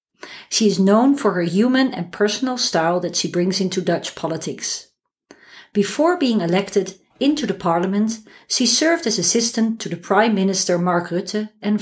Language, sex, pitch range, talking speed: English, female, 180-225 Hz, 160 wpm